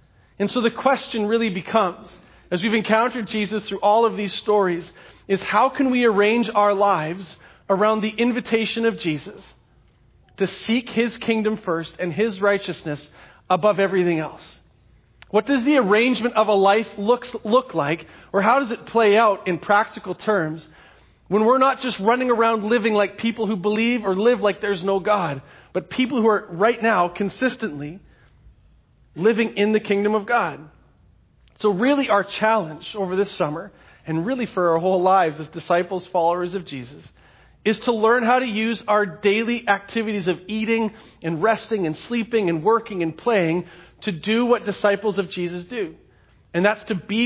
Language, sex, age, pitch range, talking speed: English, male, 40-59, 180-230 Hz, 170 wpm